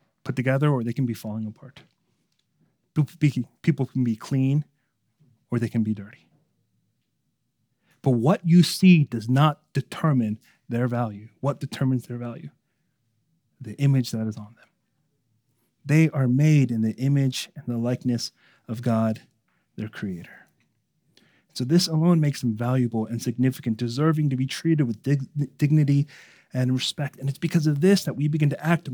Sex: male